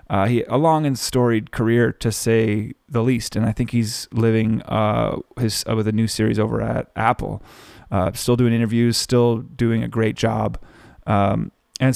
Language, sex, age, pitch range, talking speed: English, male, 30-49, 110-130 Hz, 185 wpm